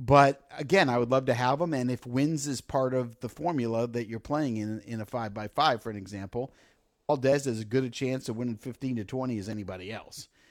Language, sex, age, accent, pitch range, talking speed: English, male, 50-69, American, 110-135 Hz, 240 wpm